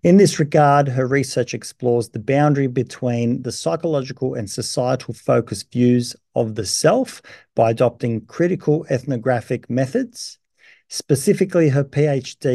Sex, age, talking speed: male, 50-69, 125 wpm